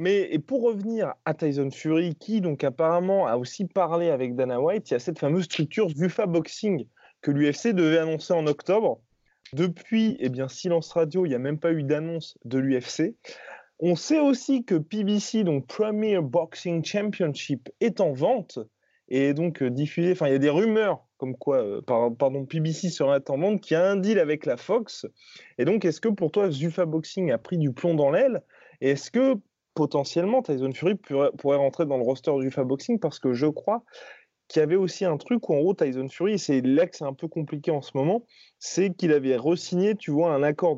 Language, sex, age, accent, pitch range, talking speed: French, male, 20-39, French, 145-190 Hz, 210 wpm